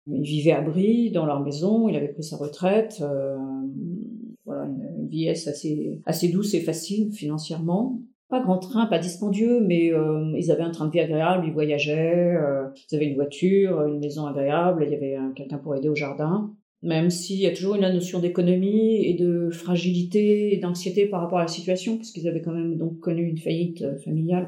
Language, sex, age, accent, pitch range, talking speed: French, female, 40-59, French, 150-185 Hz, 205 wpm